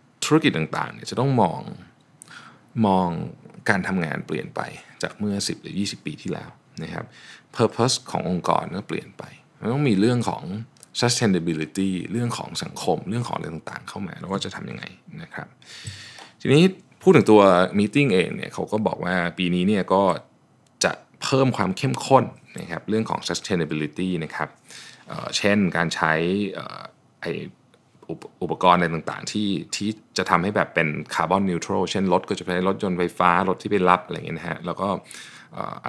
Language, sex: Thai, male